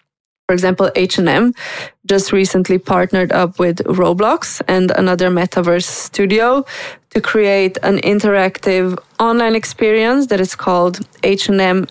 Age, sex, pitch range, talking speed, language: 20-39, female, 185-220 Hz, 115 wpm, English